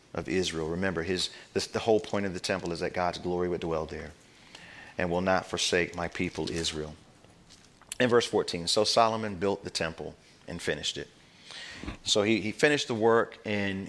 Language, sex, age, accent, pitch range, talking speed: English, male, 40-59, American, 85-100 Hz, 185 wpm